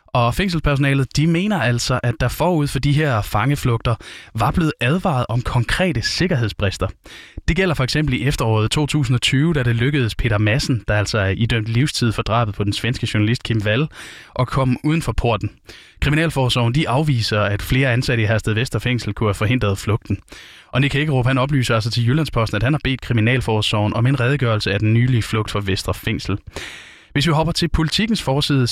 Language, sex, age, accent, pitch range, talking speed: Danish, male, 20-39, native, 115-140 Hz, 185 wpm